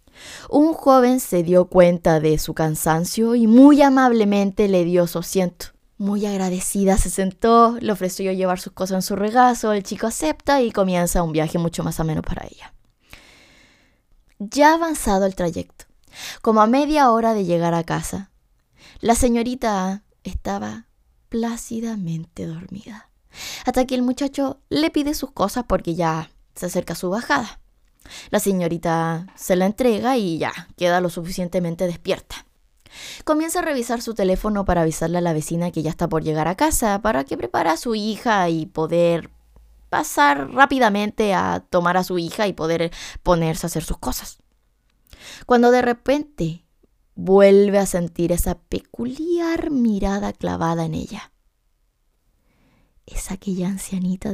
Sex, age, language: female, 20-39, Spanish